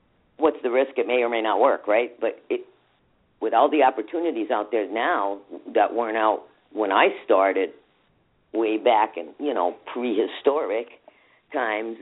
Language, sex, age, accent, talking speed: English, female, 50-69, American, 155 wpm